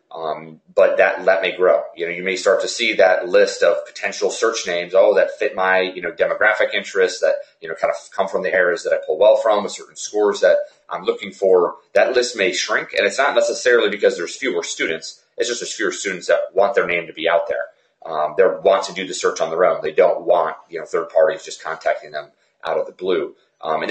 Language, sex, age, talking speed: English, male, 30-49, 245 wpm